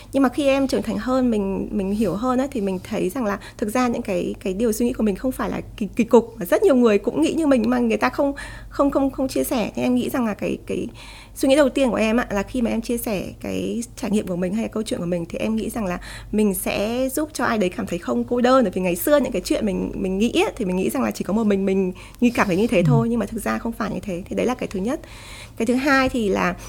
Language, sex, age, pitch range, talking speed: Vietnamese, female, 20-39, 190-255 Hz, 320 wpm